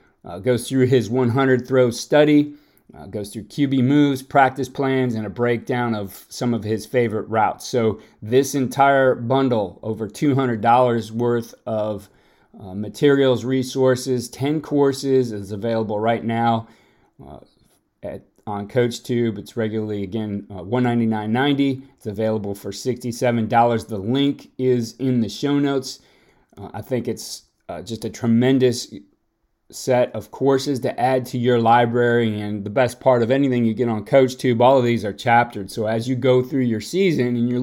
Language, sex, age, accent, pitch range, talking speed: English, male, 30-49, American, 110-130 Hz, 155 wpm